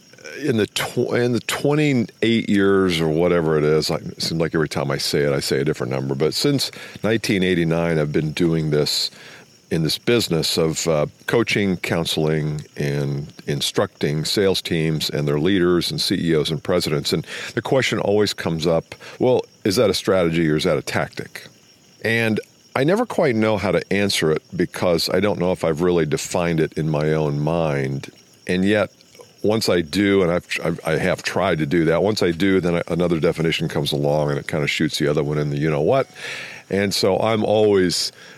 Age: 50-69